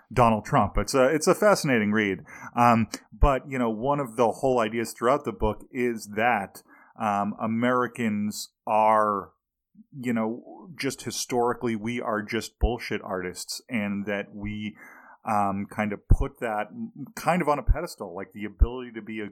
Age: 30-49